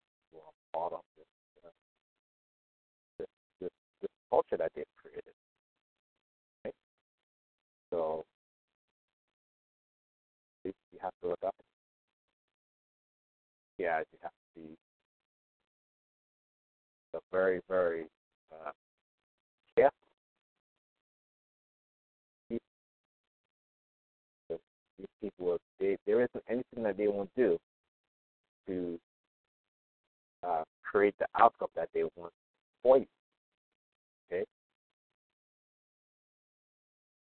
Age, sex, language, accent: 50-69, male, English, American